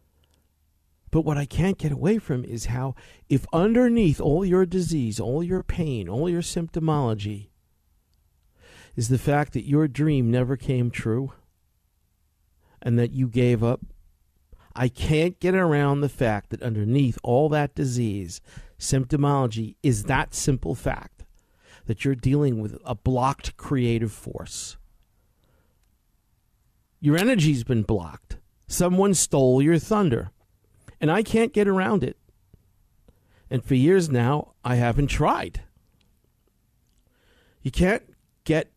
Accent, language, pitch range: American, English, 110-160 Hz